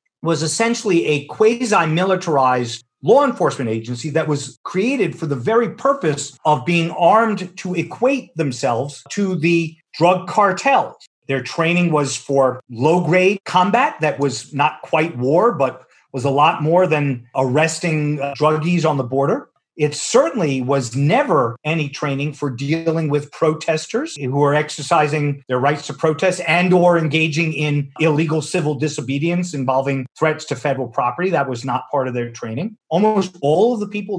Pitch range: 140-175 Hz